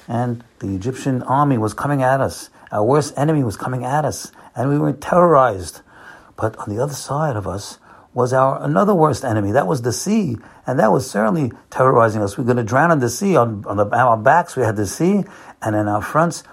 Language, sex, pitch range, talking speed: English, male, 105-145 Hz, 230 wpm